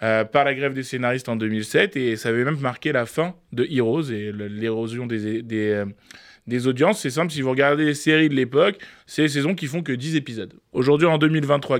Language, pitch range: French, 125-150 Hz